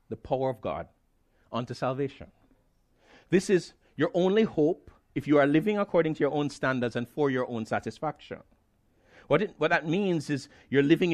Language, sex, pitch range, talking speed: English, male, 130-175 Hz, 180 wpm